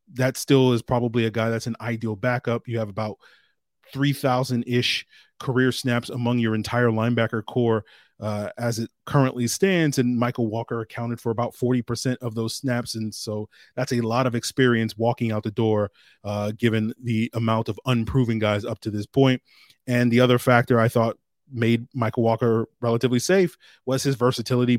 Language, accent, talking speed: English, American, 175 wpm